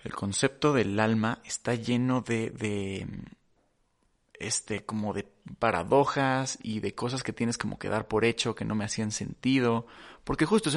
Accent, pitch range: Mexican, 105-125 Hz